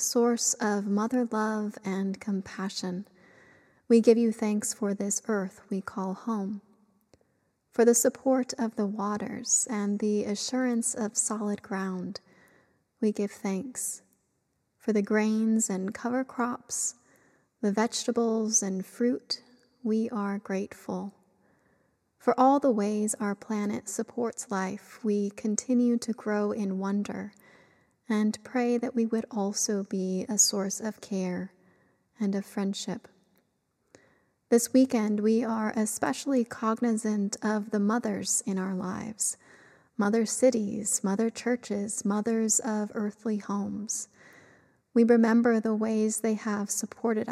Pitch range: 205-230 Hz